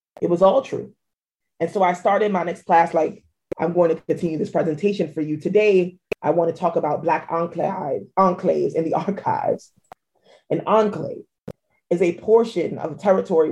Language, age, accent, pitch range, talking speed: English, 30-49, American, 165-190 Hz, 175 wpm